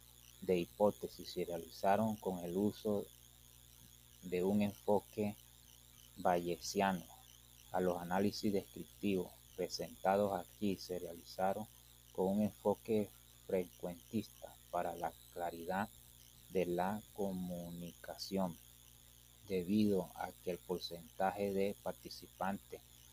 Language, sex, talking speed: Spanish, male, 95 wpm